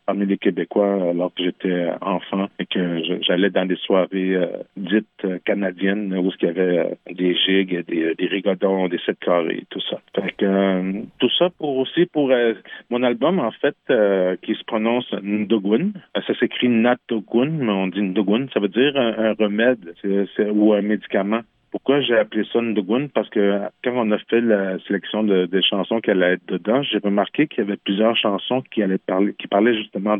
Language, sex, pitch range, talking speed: French, male, 95-110 Hz, 205 wpm